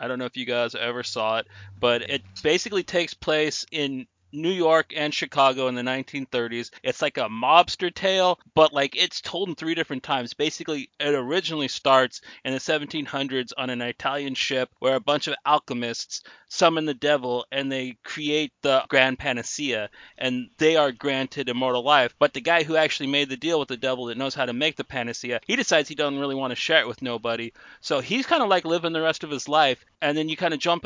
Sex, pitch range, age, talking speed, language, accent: male, 130-155 Hz, 30-49, 220 wpm, English, American